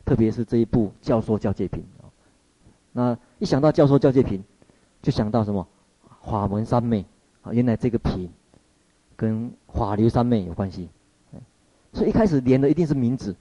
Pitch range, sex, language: 95-125 Hz, male, Chinese